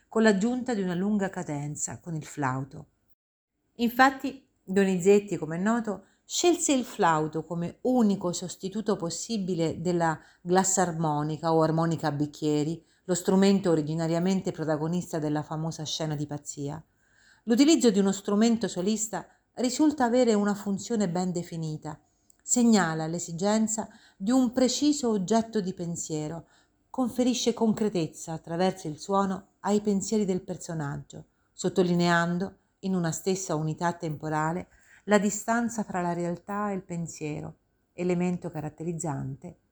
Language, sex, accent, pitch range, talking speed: Italian, female, native, 155-205 Hz, 120 wpm